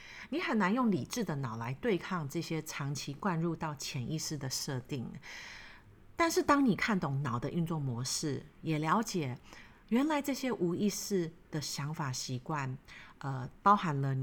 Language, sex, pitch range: Chinese, female, 140-200 Hz